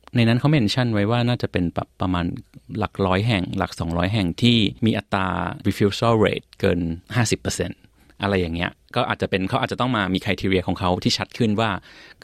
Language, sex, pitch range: Thai, male, 95-120 Hz